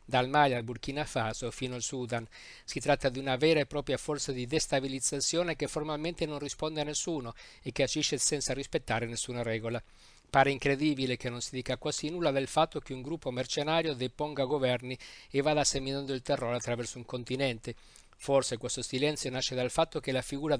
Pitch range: 125-145 Hz